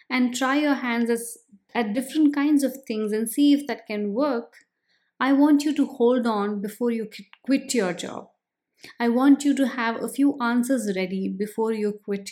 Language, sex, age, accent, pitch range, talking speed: English, female, 20-39, Indian, 215-270 Hz, 185 wpm